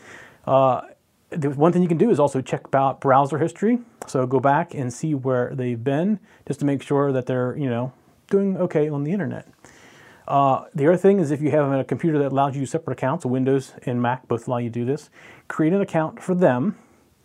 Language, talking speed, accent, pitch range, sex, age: English, 225 wpm, American, 125-155 Hz, male, 30-49